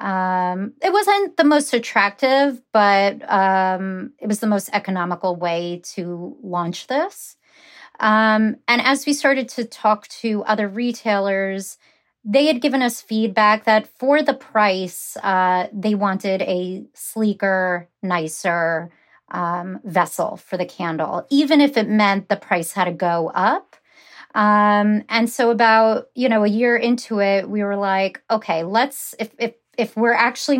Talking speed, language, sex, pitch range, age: 150 wpm, English, female, 185-235 Hz, 30-49